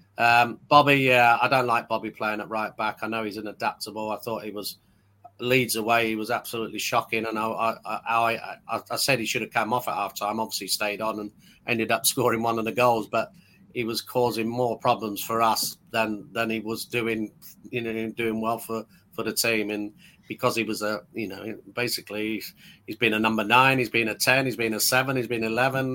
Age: 40-59